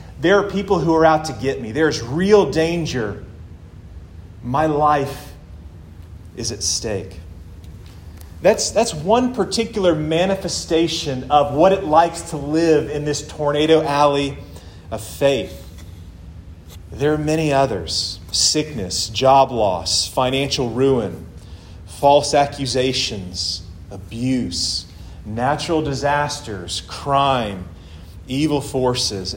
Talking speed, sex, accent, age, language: 105 wpm, male, American, 40-59, English